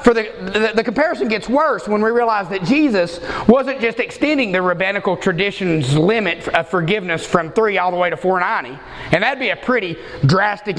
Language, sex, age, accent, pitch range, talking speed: English, male, 30-49, American, 175-240 Hz, 190 wpm